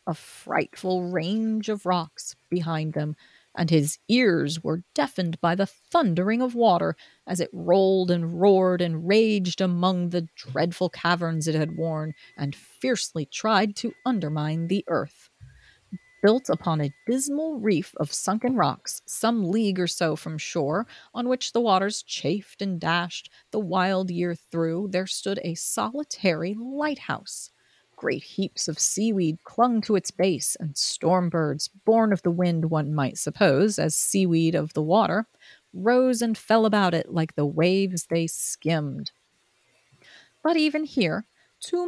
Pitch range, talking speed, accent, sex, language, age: 165-220 Hz, 150 wpm, American, female, English, 30-49